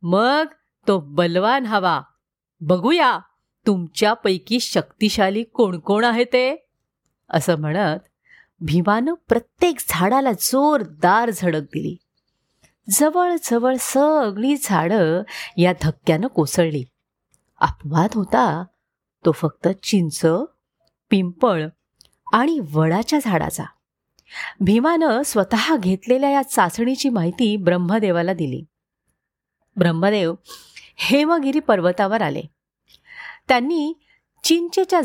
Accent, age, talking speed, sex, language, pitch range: native, 30-49, 80 wpm, female, Marathi, 175-265 Hz